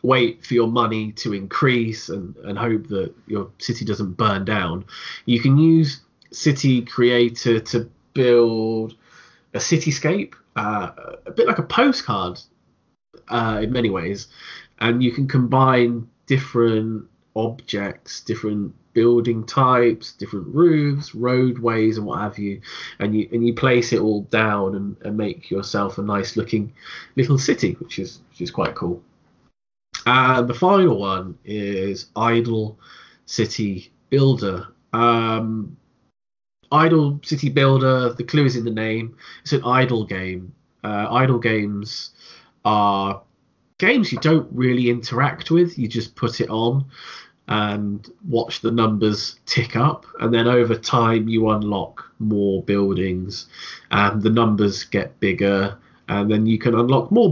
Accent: British